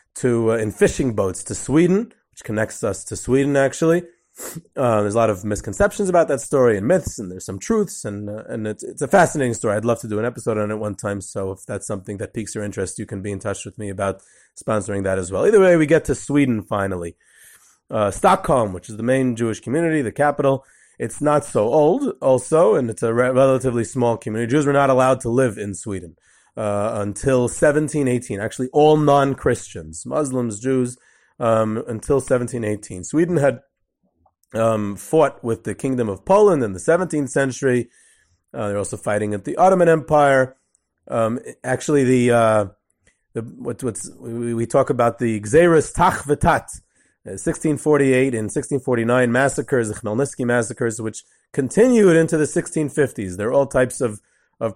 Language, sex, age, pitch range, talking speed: English, male, 30-49, 105-140 Hz, 180 wpm